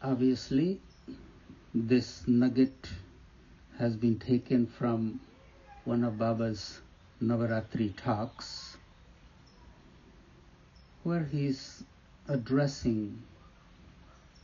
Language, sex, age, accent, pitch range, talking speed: English, male, 60-79, Indian, 85-120 Hz, 65 wpm